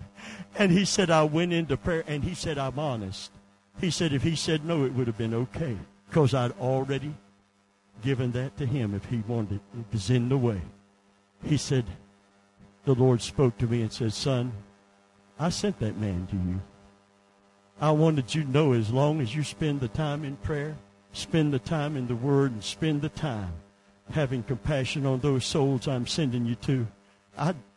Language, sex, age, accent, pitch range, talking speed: English, male, 60-79, American, 100-155 Hz, 190 wpm